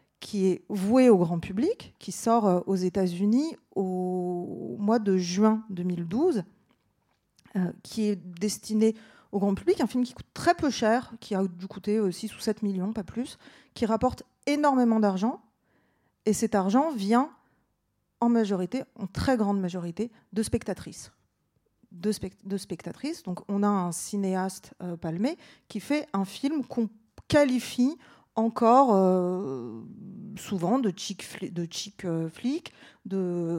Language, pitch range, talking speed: French, 195-245 Hz, 140 wpm